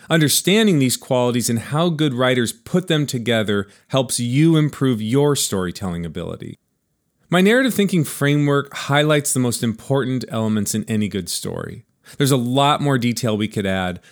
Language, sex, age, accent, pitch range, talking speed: English, male, 40-59, American, 105-145 Hz, 155 wpm